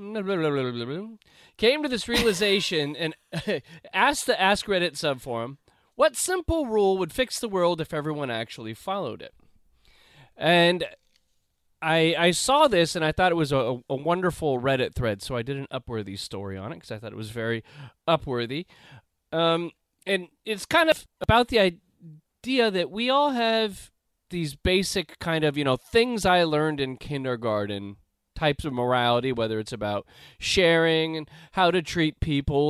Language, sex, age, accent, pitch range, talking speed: English, male, 30-49, American, 125-180 Hz, 160 wpm